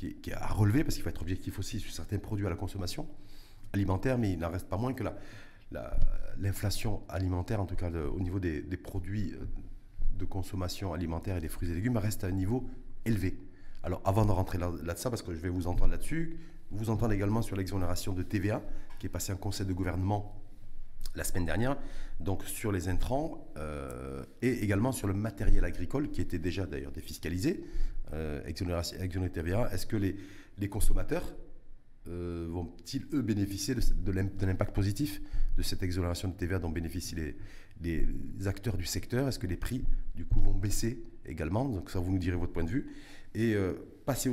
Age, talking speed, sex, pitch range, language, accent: 40-59, 200 wpm, male, 90-110 Hz, French, French